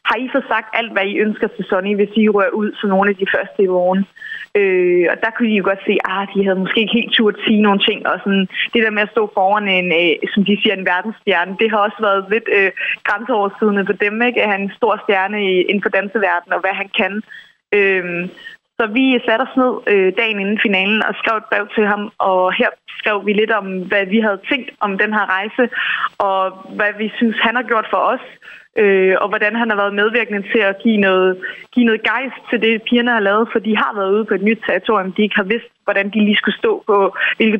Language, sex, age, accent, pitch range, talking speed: Danish, female, 20-39, native, 195-230 Hz, 240 wpm